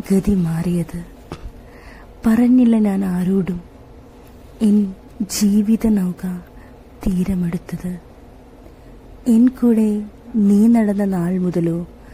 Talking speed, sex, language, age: 70 wpm, female, Malayalam, 20-39